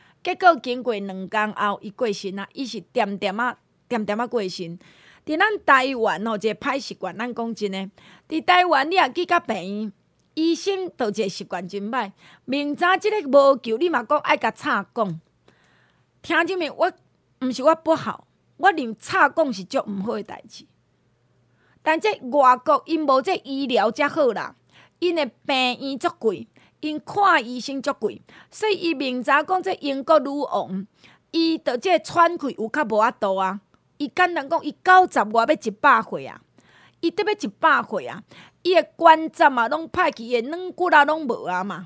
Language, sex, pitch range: Chinese, female, 225-330 Hz